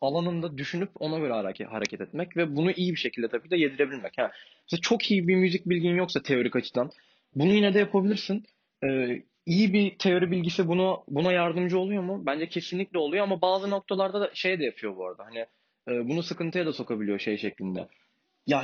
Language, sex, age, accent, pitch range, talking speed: Turkish, male, 20-39, native, 140-200 Hz, 190 wpm